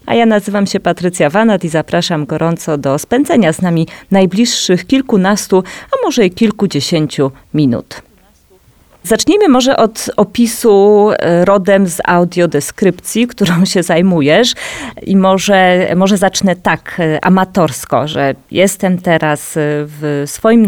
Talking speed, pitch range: 120 wpm, 160-200 Hz